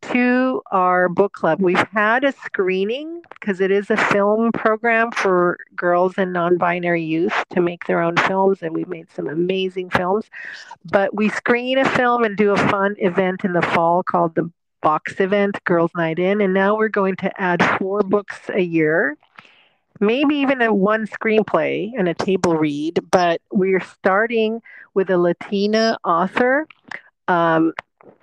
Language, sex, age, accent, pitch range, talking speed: English, female, 40-59, American, 170-205 Hz, 165 wpm